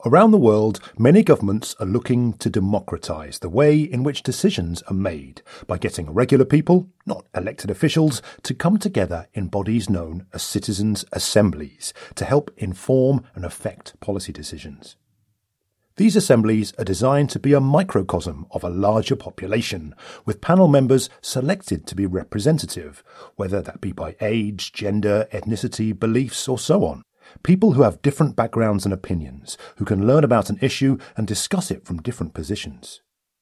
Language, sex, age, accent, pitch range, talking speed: English, male, 40-59, British, 100-145 Hz, 160 wpm